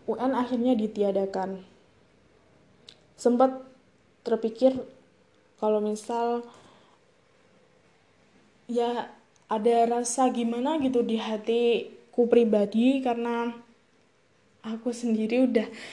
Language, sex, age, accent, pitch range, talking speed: Indonesian, female, 10-29, native, 220-245 Hz, 70 wpm